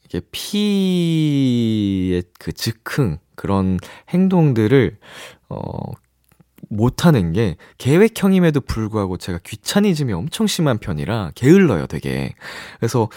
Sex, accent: male, native